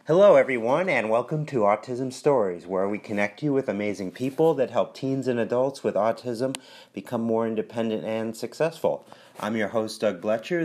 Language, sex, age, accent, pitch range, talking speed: English, male, 30-49, American, 105-125 Hz, 175 wpm